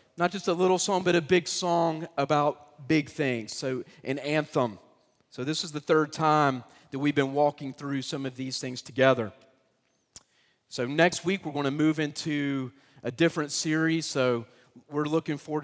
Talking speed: 175 wpm